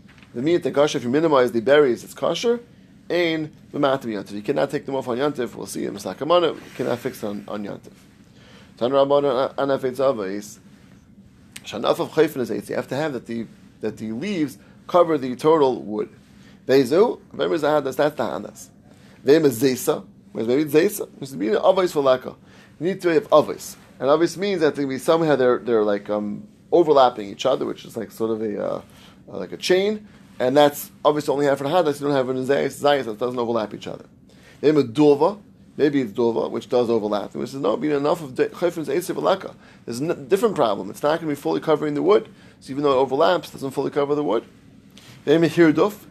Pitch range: 115-150 Hz